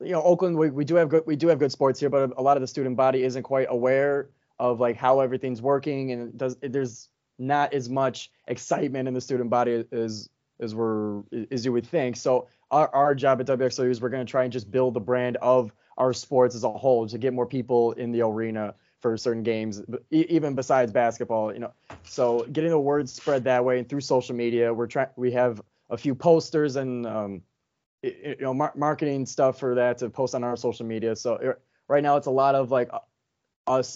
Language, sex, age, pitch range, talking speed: English, male, 20-39, 120-140 Hz, 230 wpm